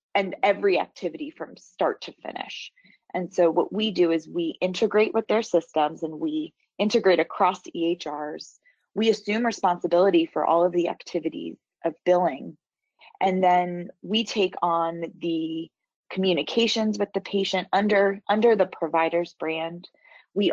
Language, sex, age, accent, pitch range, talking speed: English, female, 20-39, American, 165-205 Hz, 145 wpm